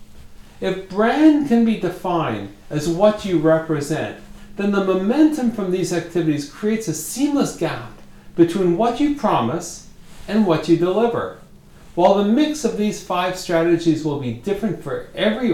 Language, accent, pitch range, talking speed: English, American, 150-205 Hz, 150 wpm